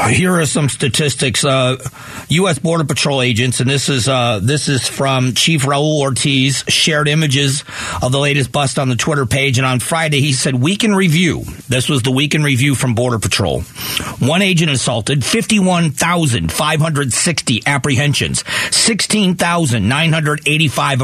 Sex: male